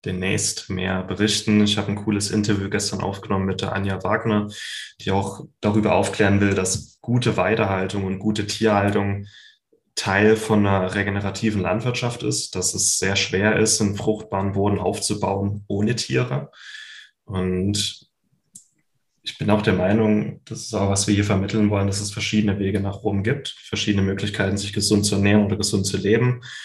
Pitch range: 95-105 Hz